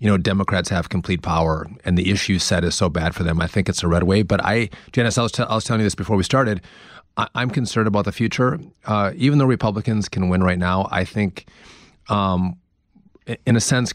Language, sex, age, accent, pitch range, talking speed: English, male, 30-49, American, 95-115 Hz, 235 wpm